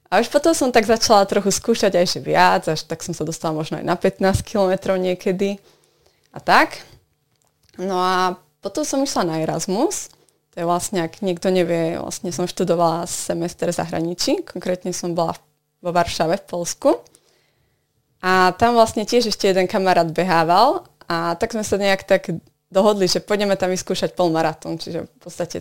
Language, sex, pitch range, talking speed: Slovak, female, 170-195 Hz, 170 wpm